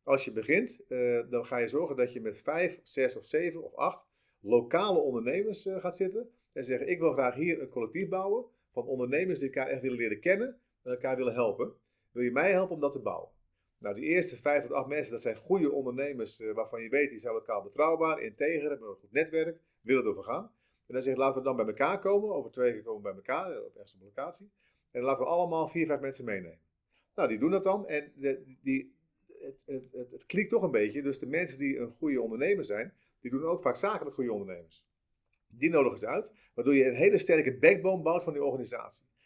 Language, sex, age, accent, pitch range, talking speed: Dutch, male, 50-69, Dutch, 130-190 Hz, 225 wpm